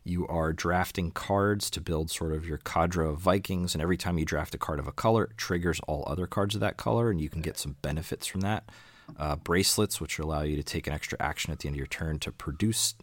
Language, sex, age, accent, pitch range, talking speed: English, male, 30-49, American, 75-90 Hz, 260 wpm